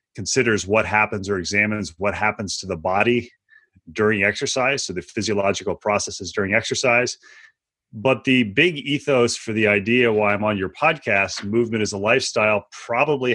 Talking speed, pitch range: 155 wpm, 105-125 Hz